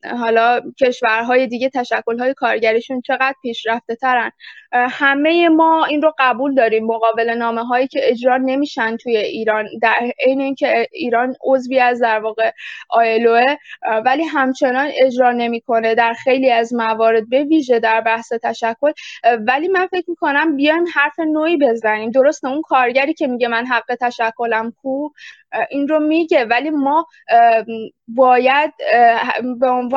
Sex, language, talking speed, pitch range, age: female, English, 145 wpm, 235-280 Hz, 20-39